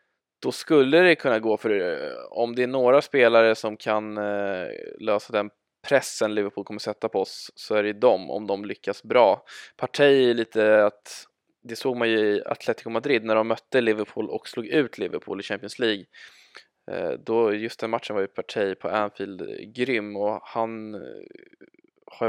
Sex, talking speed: male, 170 wpm